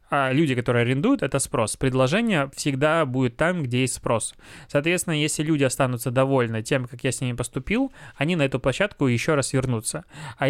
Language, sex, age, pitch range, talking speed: Russian, male, 20-39, 125-150 Hz, 185 wpm